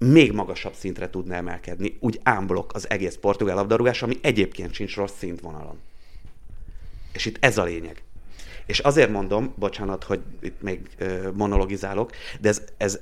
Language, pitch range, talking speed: Hungarian, 90-115 Hz, 150 wpm